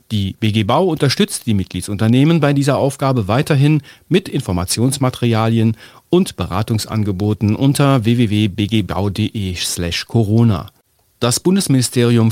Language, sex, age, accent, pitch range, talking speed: German, male, 40-59, German, 105-135 Hz, 95 wpm